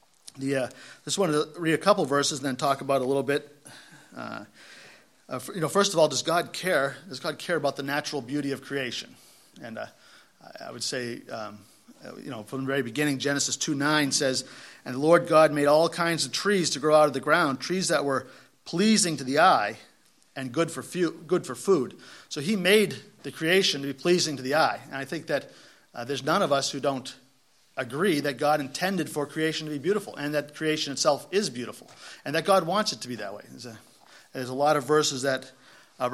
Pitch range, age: 135-165 Hz, 40-59